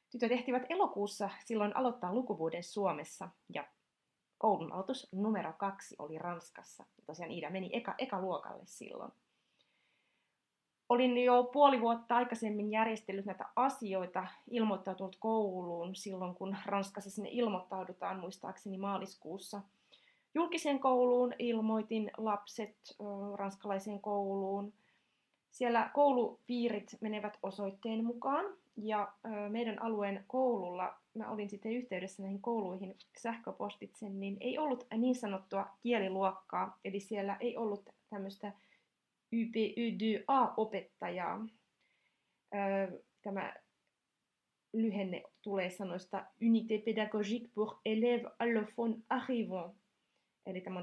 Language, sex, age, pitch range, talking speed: Finnish, female, 30-49, 195-230 Hz, 105 wpm